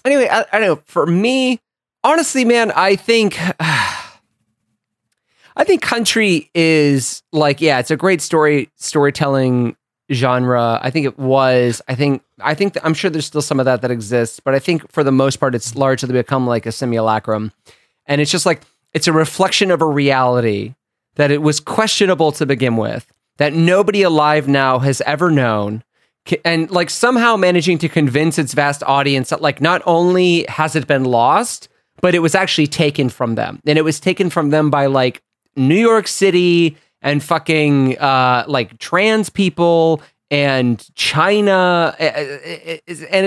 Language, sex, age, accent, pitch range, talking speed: English, male, 30-49, American, 130-180 Hz, 165 wpm